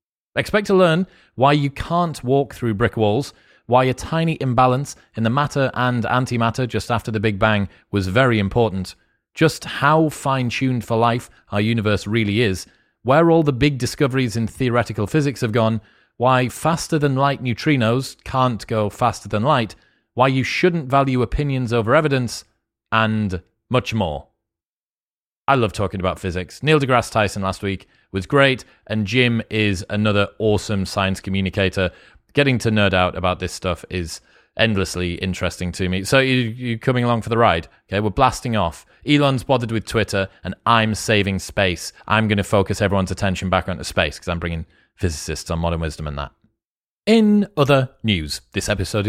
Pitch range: 100-130 Hz